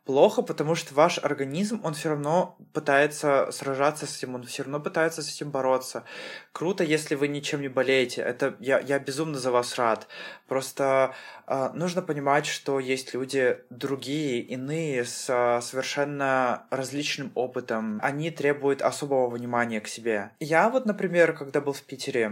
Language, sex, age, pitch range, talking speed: Russian, male, 20-39, 130-160 Hz, 160 wpm